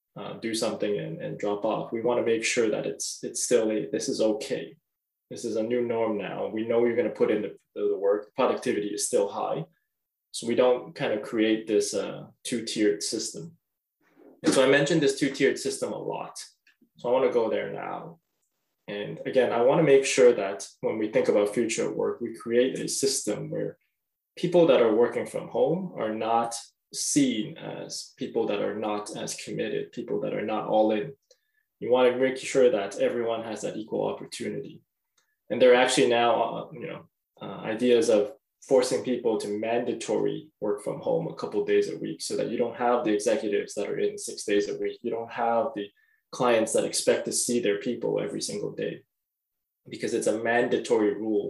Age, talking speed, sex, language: 20-39, 205 wpm, male, English